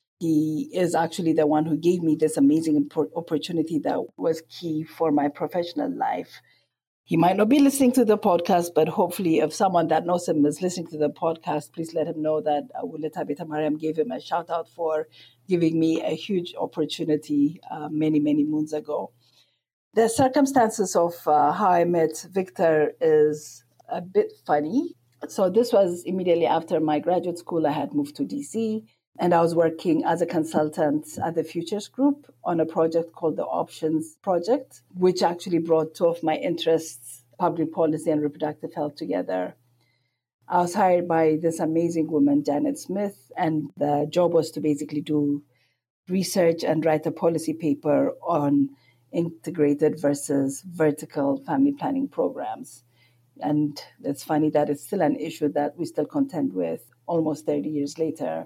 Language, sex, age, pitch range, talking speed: English, female, 50-69, 150-175 Hz, 165 wpm